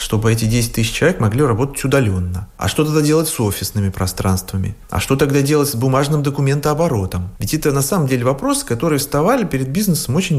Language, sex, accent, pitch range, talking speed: Russian, male, native, 110-145 Hz, 190 wpm